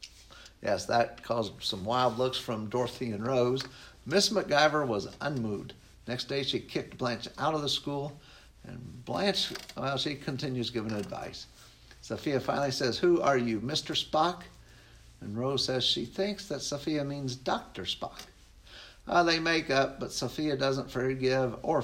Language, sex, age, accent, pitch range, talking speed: English, male, 60-79, American, 115-150 Hz, 155 wpm